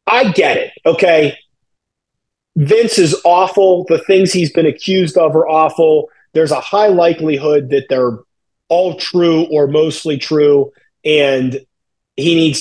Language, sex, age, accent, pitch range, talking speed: English, male, 30-49, American, 155-225 Hz, 140 wpm